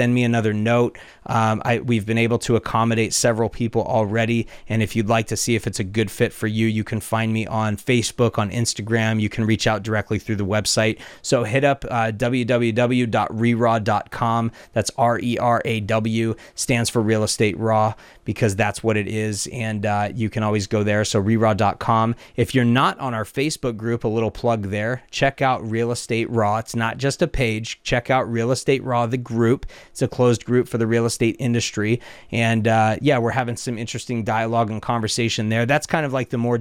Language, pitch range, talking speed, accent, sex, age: English, 110-120 Hz, 200 wpm, American, male, 30-49